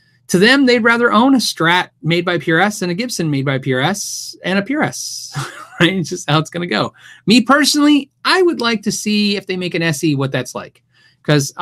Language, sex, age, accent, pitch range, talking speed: English, male, 30-49, American, 135-200 Hz, 215 wpm